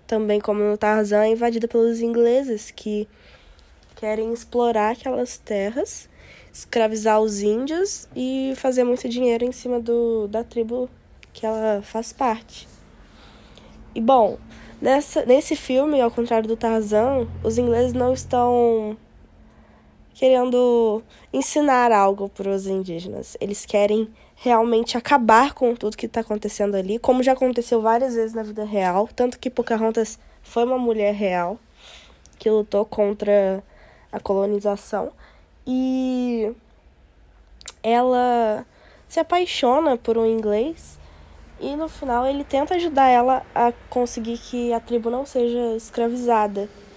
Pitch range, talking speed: 210-250 Hz, 130 wpm